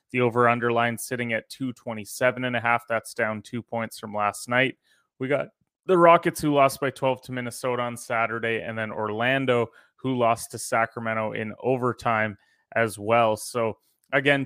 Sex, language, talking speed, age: male, English, 160 wpm, 20-39